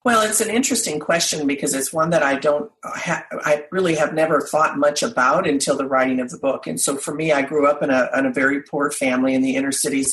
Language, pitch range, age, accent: English, 130-160 Hz, 40-59, American